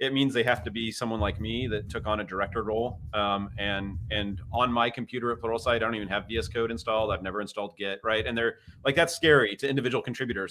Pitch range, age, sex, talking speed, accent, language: 105-130 Hz, 30-49, male, 245 wpm, American, English